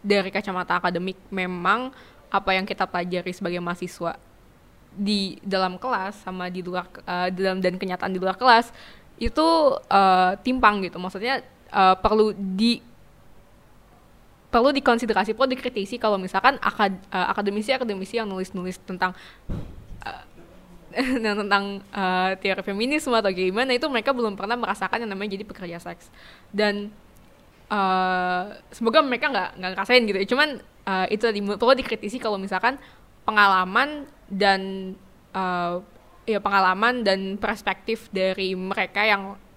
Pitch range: 185-225 Hz